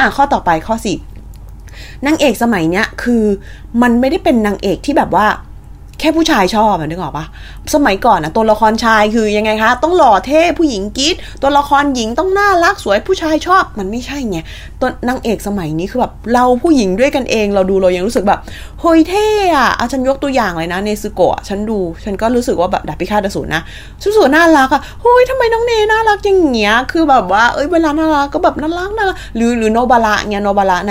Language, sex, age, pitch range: Thai, female, 20-39, 190-305 Hz